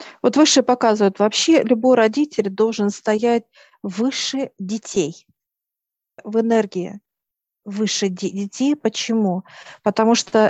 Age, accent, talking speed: 50-69, native, 95 wpm